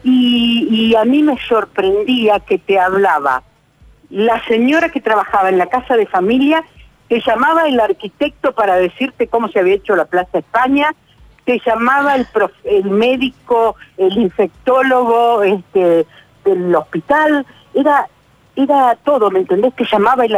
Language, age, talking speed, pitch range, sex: Spanish, 50-69, 145 wpm, 185-265 Hz, female